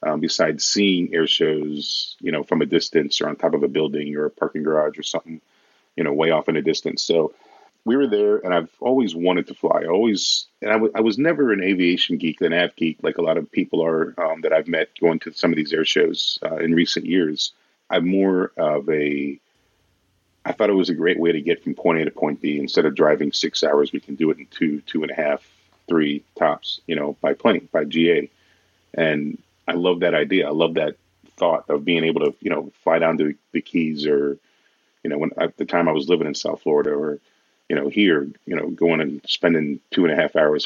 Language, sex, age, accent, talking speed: English, male, 40-59, American, 240 wpm